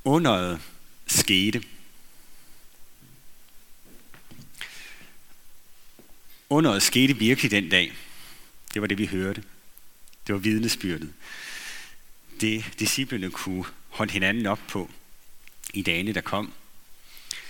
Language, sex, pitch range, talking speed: Danish, male, 90-115 Hz, 95 wpm